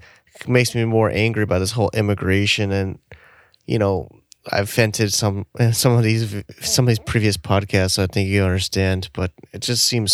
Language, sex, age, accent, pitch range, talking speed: English, male, 20-39, American, 95-120 Hz, 185 wpm